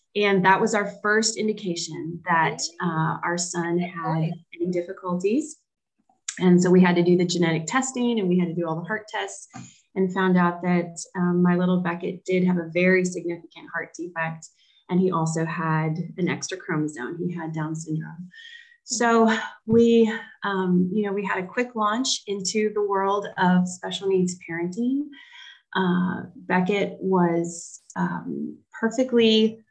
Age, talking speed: 30-49, 160 wpm